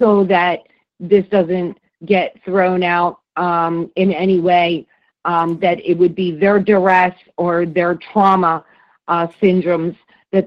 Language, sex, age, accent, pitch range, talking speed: English, female, 50-69, American, 175-205 Hz, 140 wpm